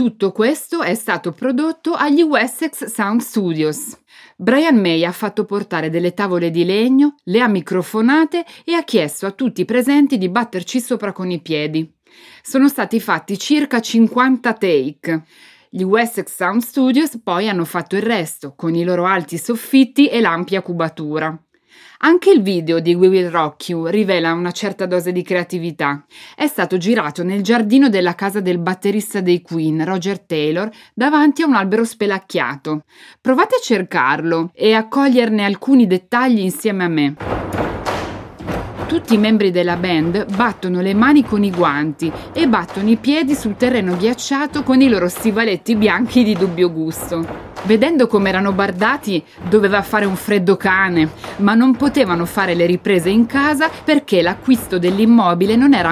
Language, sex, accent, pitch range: Italian, female, native, 175-245 Hz